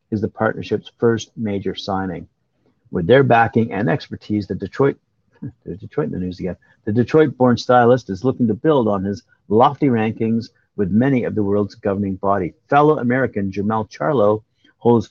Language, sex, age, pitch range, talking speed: English, male, 50-69, 100-125 Hz, 170 wpm